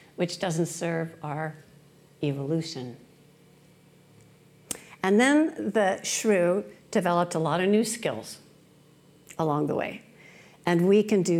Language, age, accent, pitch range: English, 60-79, American, 155-195 Hz